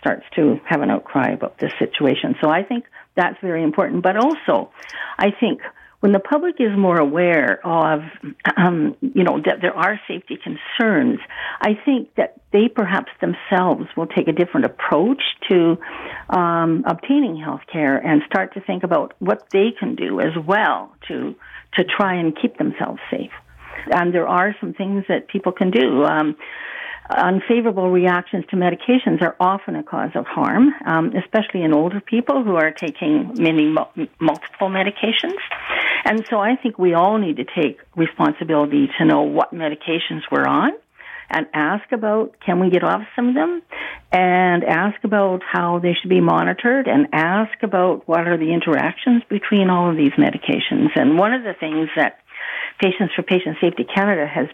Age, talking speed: 50-69, 170 wpm